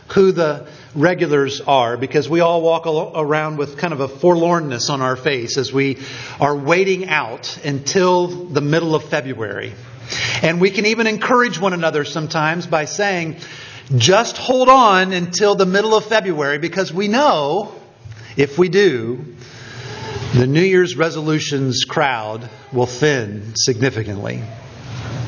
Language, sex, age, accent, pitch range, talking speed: English, male, 50-69, American, 130-180 Hz, 140 wpm